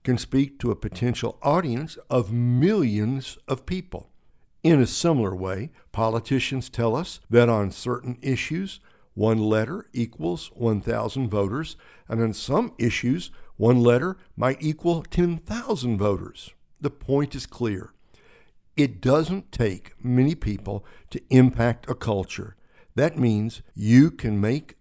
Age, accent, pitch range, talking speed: 60-79, American, 105-135 Hz, 130 wpm